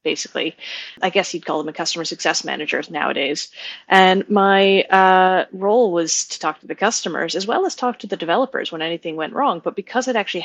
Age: 30-49